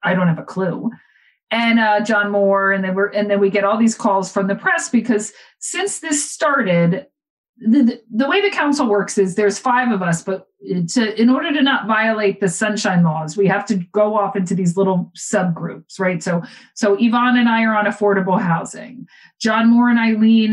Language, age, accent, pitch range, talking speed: English, 50-69, American, 185-230 Hz, 205 wpm